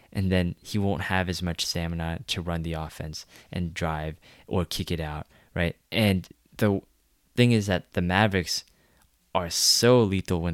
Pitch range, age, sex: 85-105 Hz, 20-39, male